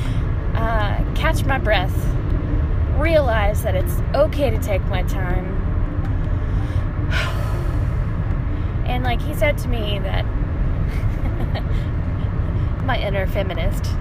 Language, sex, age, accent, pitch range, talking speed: English, female, 10-29, American, 95-110 Hz, 95 wpm